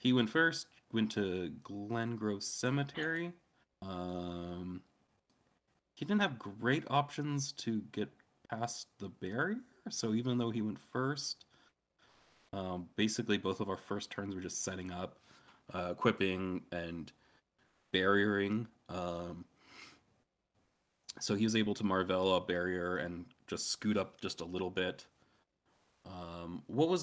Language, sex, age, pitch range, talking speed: English, male, 30-49, 90-125 Hz, 135 wpm